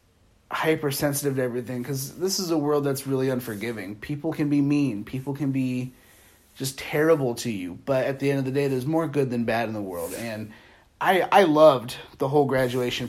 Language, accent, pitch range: English, American, 130-160 Hz